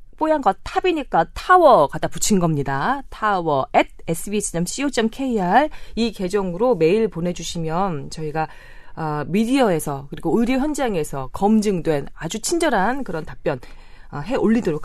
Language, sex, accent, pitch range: Korean, female, native, 155-240 Hz